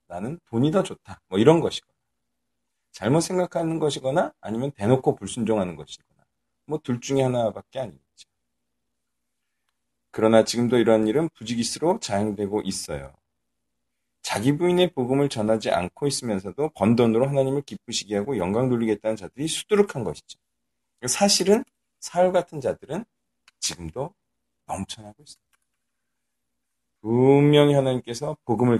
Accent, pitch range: native, 95-145 Hz